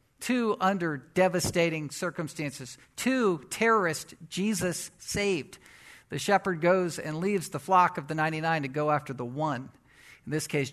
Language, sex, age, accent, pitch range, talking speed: English, male, 50-69, American, 150-205 Hz, 145 wpm